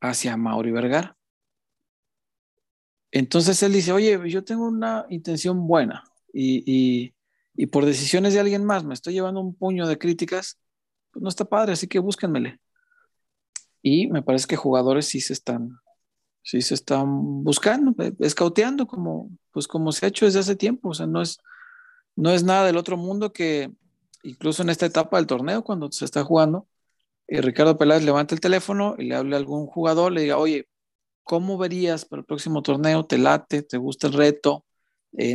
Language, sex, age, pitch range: Spanish, male, 40-59, 135-190 Hz